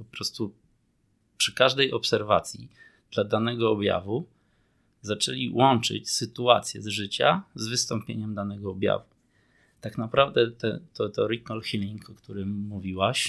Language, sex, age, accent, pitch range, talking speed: Polish, male, 20-39, native, 100-115 Hz, 115 wpm